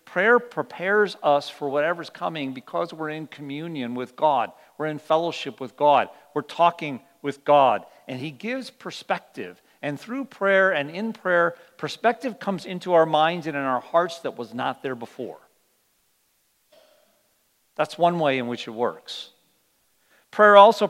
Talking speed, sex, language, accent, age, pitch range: 155 wpm, male, English, American, 50-69, 140-180 Hz